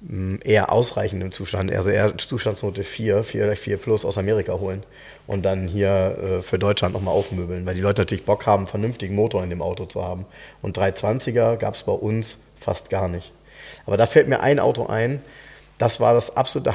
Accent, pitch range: German, 100-130 Hz